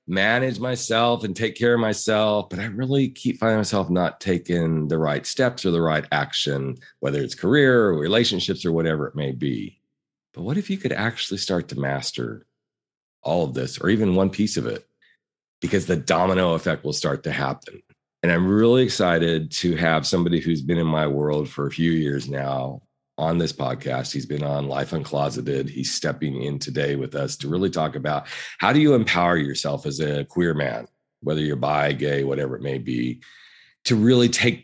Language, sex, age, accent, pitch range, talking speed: English, male, 40-59, American, 75-105 Hz, 195 wpm